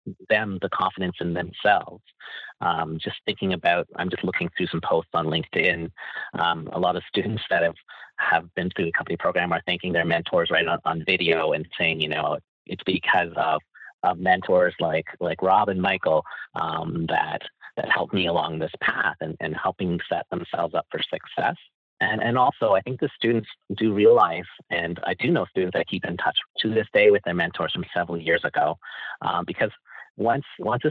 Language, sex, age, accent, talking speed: English, male, 30-49, American, 200 wpm